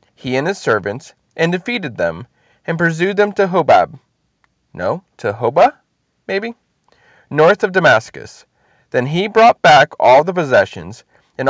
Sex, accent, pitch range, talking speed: male, American, 125-190 Hz, 140 wpm